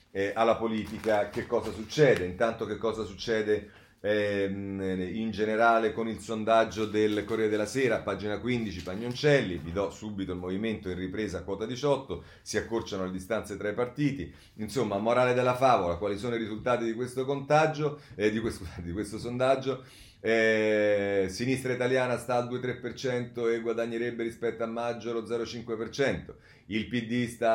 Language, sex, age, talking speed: Italian, male, 30-49, 155 wpm